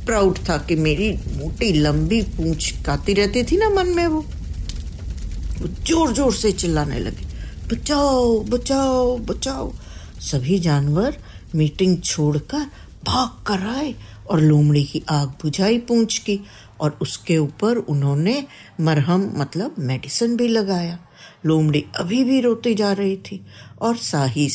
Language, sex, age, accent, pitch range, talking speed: Hindi, female, 60-79, native, 150-225 Hz, 135 wpm